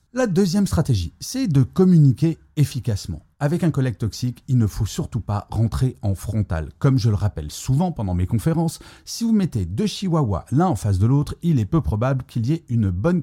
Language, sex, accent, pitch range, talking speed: French, male, French, 105-155 Hz, 210 wpm